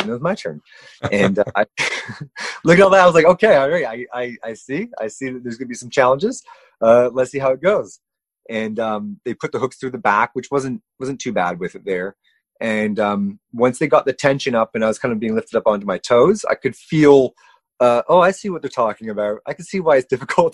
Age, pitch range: 30-49, 110-160 Hz